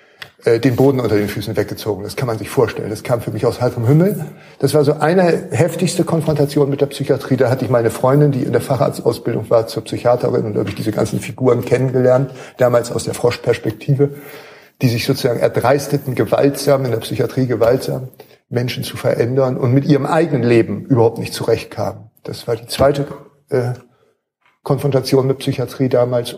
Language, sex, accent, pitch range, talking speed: German, male, German, 120-145 Hz, 185 wpm